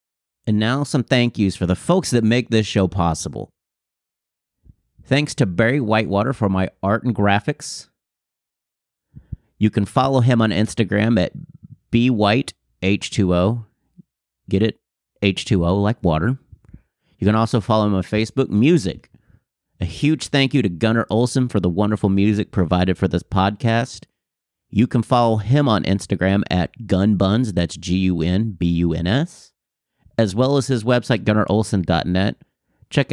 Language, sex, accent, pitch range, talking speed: English, male, American, 95-125 Hz, 135 wpm